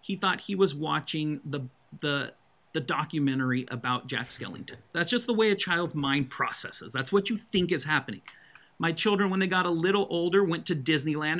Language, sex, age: English, male, 40-59